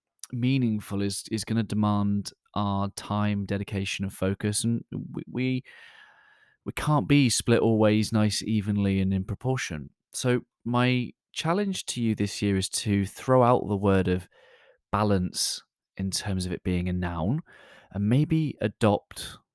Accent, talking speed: British, 150 wpm